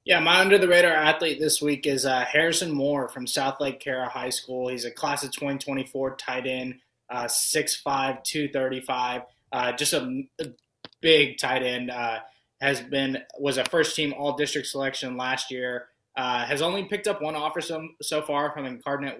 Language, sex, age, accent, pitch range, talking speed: English, male, 20-39, American, 130-150 Hz, 170 wpm